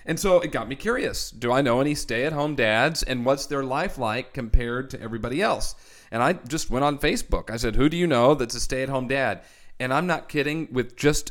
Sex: male